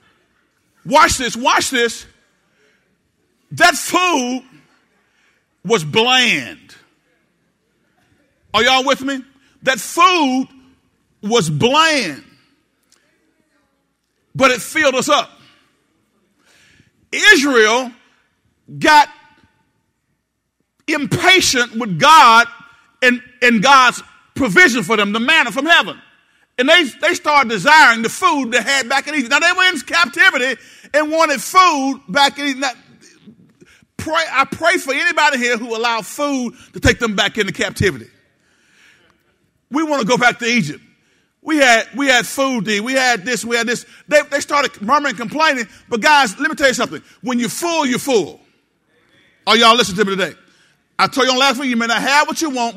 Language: English